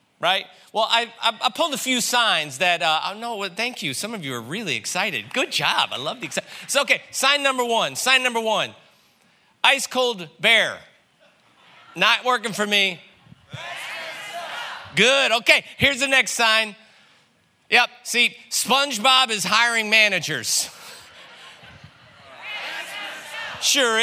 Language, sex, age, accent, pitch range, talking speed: English, male, 40-59, American, 170-235 Hz, 140 wpm